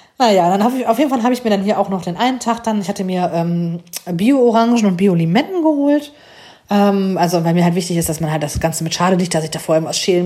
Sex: female